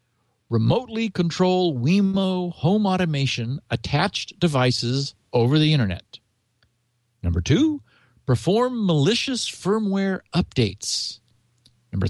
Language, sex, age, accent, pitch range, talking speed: English, male, 50-69, American, 120-185 Hz, 85 wpm